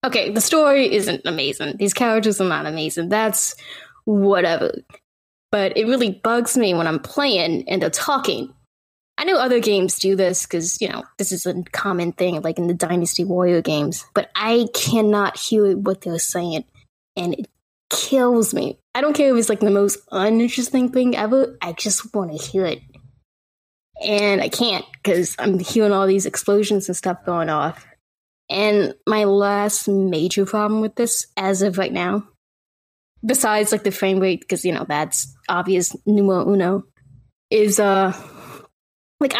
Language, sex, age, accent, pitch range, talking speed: English, female, 10-29, American, 180-220 Hz, 170 wpm